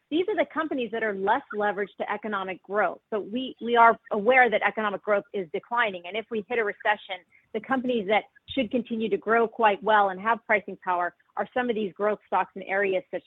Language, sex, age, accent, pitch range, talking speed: English, female, 40-59, American, 190-235 Hz, 220 wpm